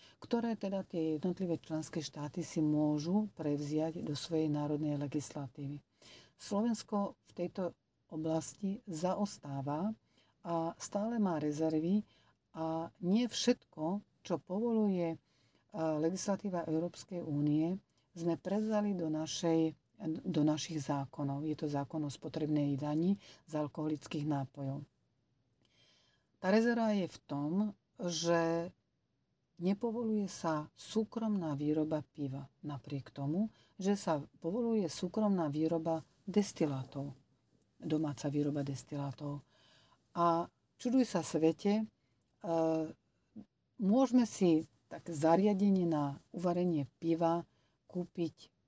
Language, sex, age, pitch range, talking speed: Slovak, female, 50-69, 145-185 Hz, 100 wpm